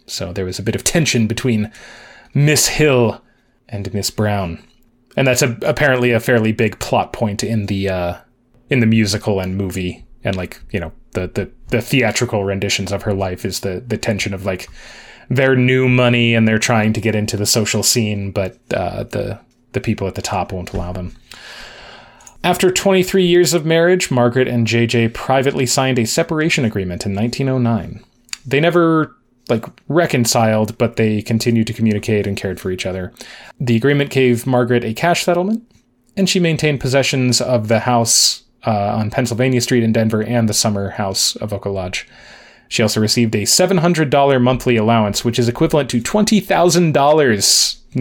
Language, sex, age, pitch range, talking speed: English, male, 30-49, 105-130 Hz, 175 wpm